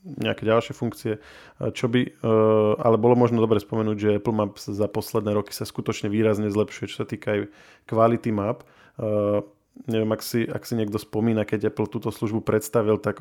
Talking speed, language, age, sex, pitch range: 180 wpm, Slovak, 20-39, male, 105-115 Hz